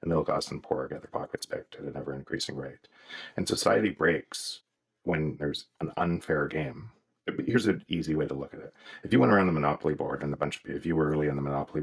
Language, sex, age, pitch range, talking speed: English, male, 40-59, 70-80 Hz, 255 wpm